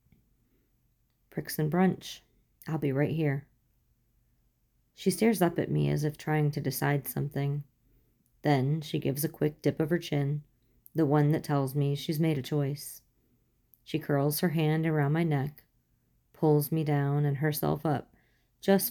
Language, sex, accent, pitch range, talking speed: English, female, American, 135-160 Hz, 160 wpm